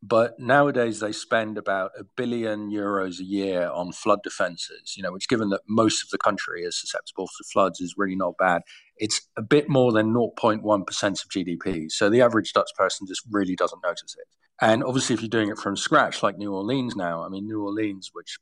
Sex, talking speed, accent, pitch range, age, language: male, 210 wpm, British, 95-120 Hz, 40-59, English